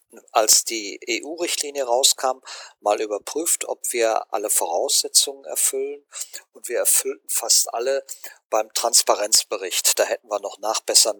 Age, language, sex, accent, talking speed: 50-69, German, male, German, 125 wpm